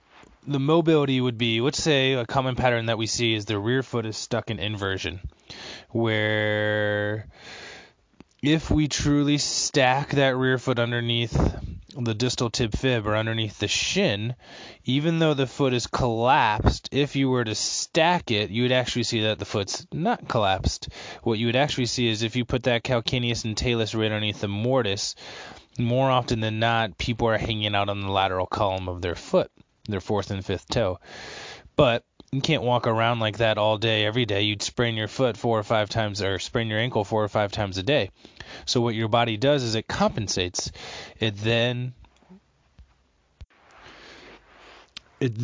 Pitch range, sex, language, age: 105-125 Hz, male, English, 20-39